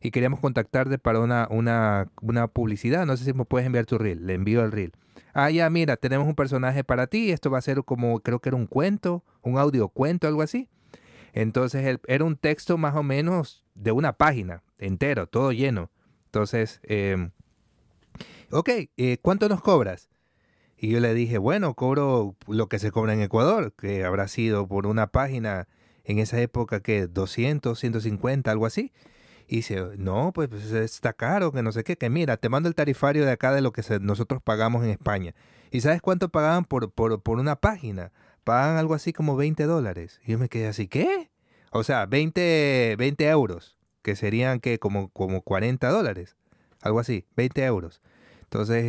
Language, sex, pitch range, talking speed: Spanish, male, 105-140 Hz, 190 wpm